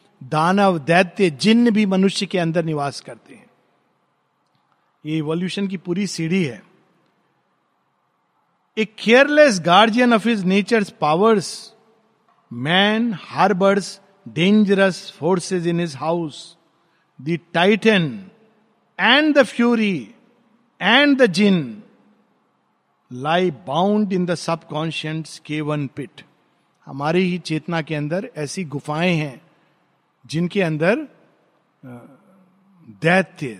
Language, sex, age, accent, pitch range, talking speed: Hindi, male, 50-69, native, 160-210 Hz, 105 wpm